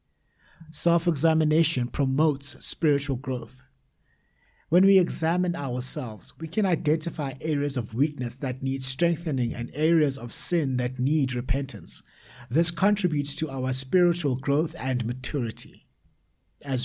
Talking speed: 120 wpm